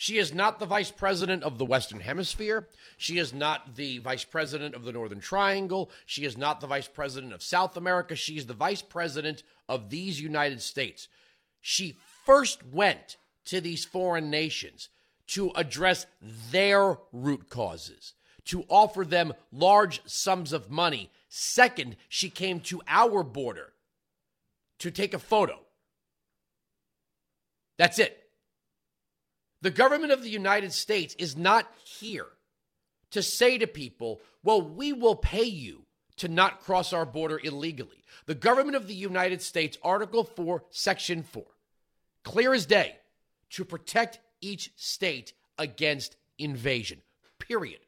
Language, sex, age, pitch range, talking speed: English, male, 40-59, 145-200 Hz, 140 wpm